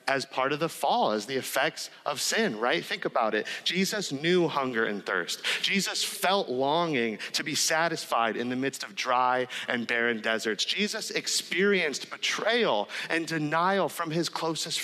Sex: male